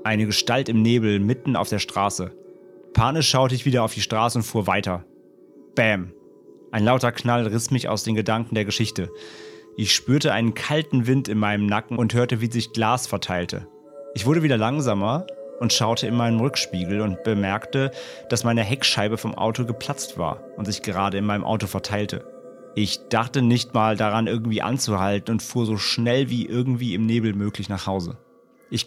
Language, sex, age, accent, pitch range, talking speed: German, male, 30-49, German, 100-125 Hz, 180 wpm